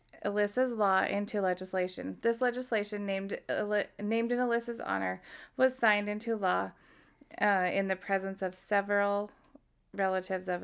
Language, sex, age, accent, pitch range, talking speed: English, female, 20-39, American, 190-230 Hz, 135 wpm